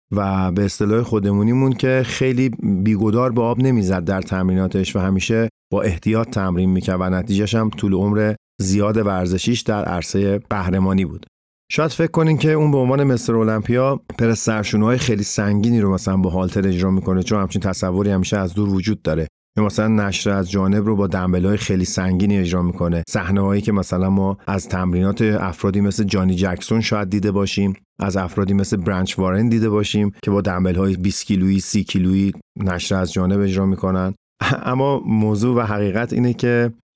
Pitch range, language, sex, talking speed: 95-115 Hz, Persian, male, 175 wpm